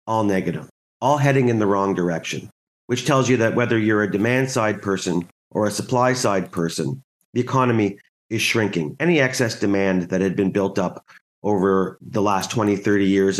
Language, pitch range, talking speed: English, 105-135 Hz, 175 wpm